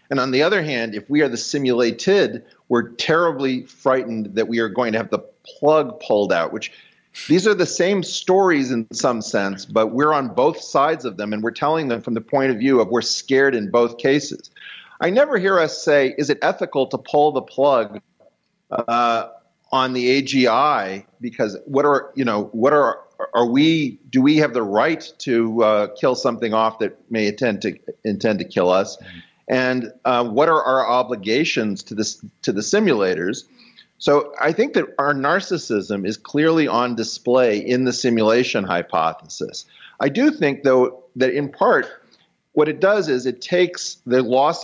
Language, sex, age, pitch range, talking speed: English, male, 40-59, 115-145 Hz, 185 wpm